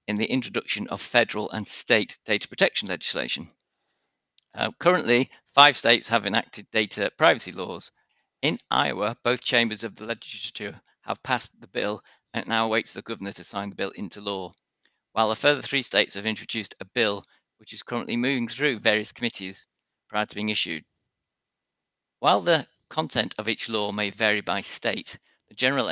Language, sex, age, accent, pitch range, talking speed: English, male, 50-69, British, 100-120 Hz, 170 wpm